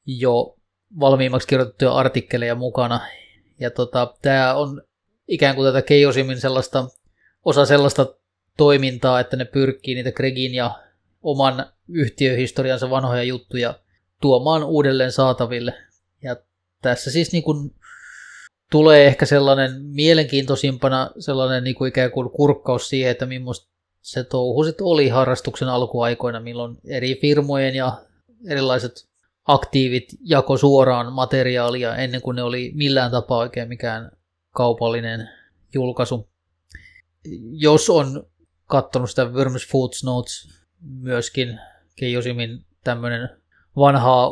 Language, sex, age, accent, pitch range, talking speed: Finnish, male, 20-39, native, 125-140 Hz, 105 wpm